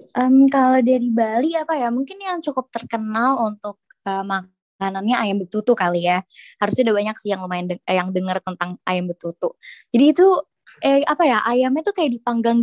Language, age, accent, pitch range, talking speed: Indonesian, 20-39, native, 205-275 Hz, 180 wpm